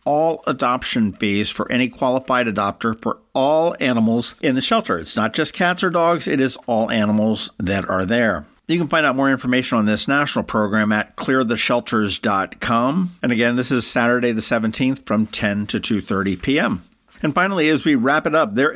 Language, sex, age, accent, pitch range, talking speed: English, male, 50-69, American, 110-145 Hz, 190 wpm